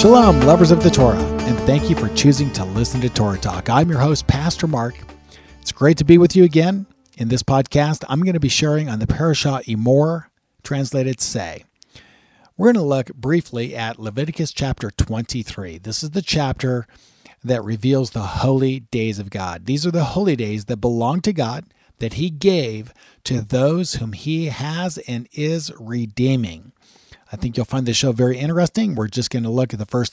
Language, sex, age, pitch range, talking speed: English, male, 40-59, 115-150 Hz, 195 wpm